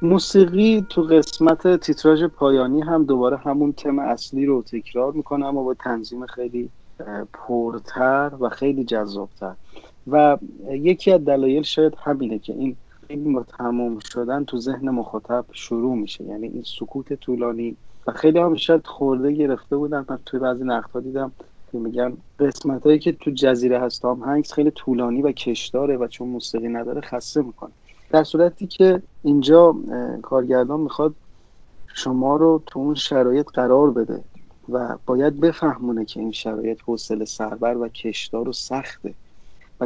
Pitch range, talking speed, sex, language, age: 120-150 Hz, 145 wpm, male, Persian, 30-49